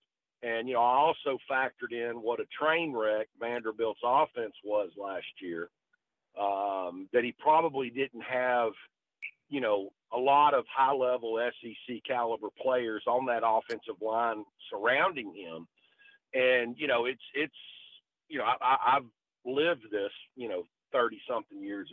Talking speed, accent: 140 wpm, American